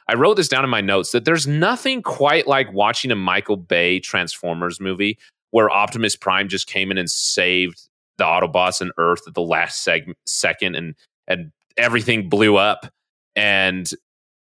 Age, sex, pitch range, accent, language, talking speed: 30-49, male, 95-115 Hz, American, English, 170 wpm